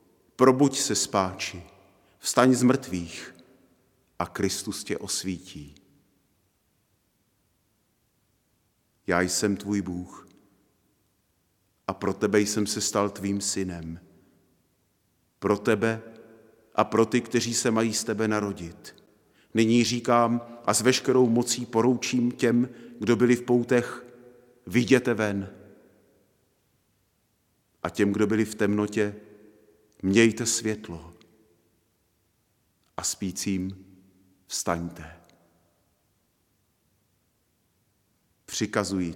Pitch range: 95-115 Hz